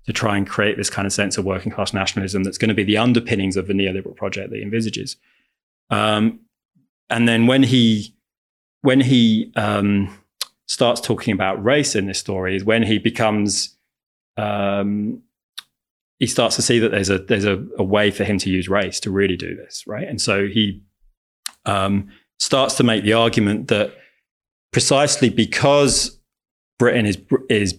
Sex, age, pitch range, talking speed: male, 20-39, 100-115 Hz, 175 wpm